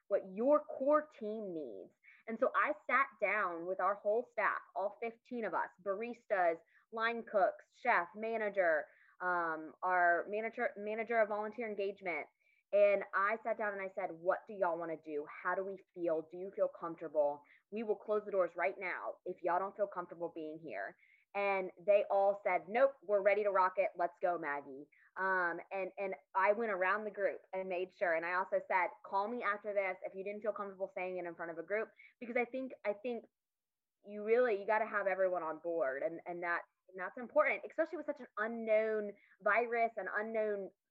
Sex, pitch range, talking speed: female, 185-225 Hz, 200 wpm